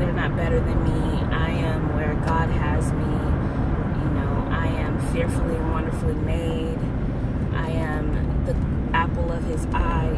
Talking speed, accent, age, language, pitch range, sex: 155 wpm, American, 20-39, English, 80-105 Hz, female